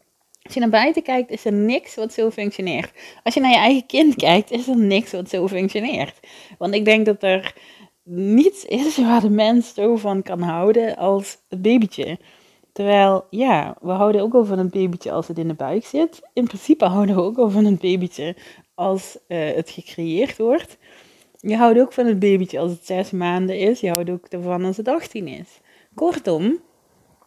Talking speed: 200 wpm